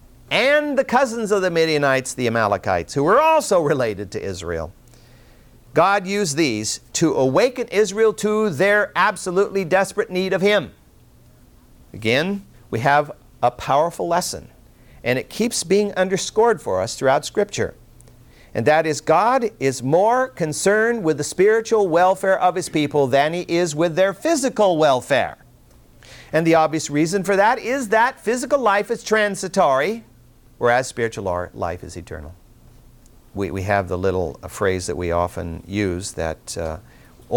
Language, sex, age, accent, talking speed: English, male, 50-69, American, 150 wpm